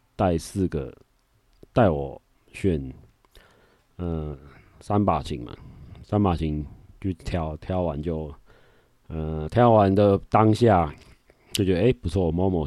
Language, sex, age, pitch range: Chinese, male, 30-49, 80-105 Hz